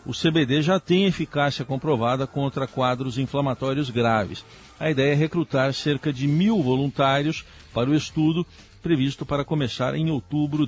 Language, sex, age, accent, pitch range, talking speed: Portuguese, male, 50-69, Brazilian, 130-165 Hz, 145 wpm